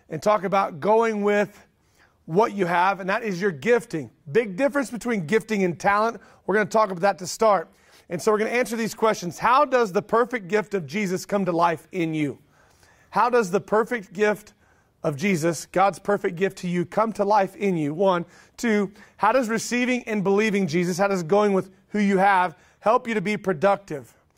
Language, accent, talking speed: English, American, 205 wpm